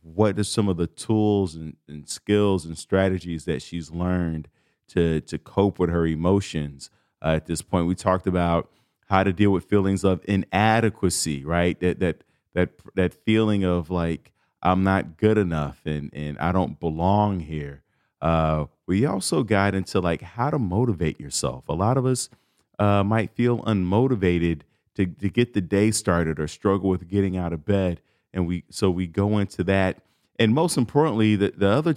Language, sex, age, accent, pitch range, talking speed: English, male, 40-59, American, 85-100 Hz, 180 wpm